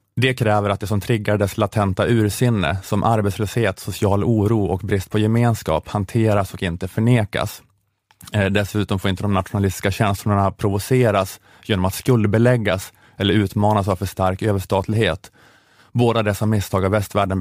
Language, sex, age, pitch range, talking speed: Swedish, male, 20-39, 95-110 Hz, 145 wpm